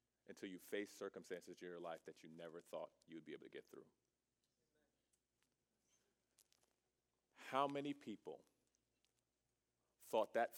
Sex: male